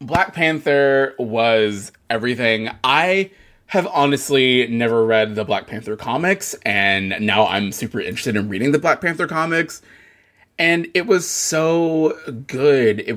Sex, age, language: male, 20-39, English